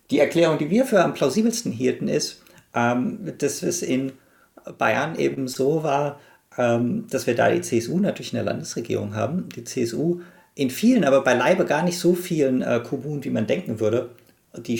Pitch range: 105-140 Hz